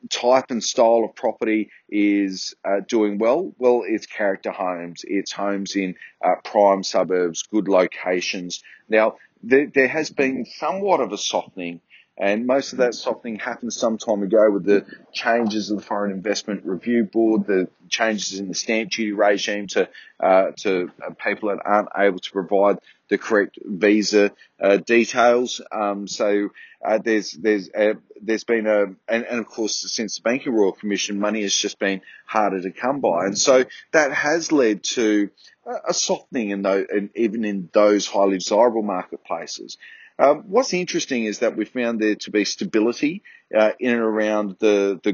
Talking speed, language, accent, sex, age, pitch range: 170 wpm, English, Australian, male, 30-49, 100-115 Hz